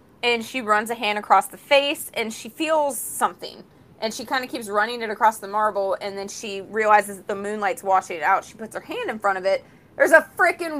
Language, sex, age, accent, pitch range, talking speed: English, female, 20-39, American, 205-260 Hz, 240 wpm